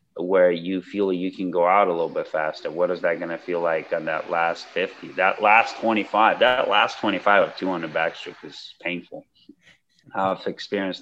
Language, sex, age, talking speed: English, male, 30-49, 190 wpm